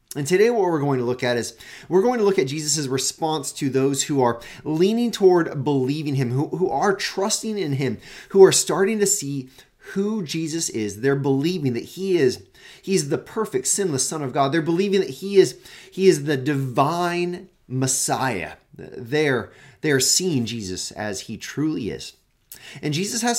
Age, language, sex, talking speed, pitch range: 30-49, English, male, 180 wpm, 130-180 Hz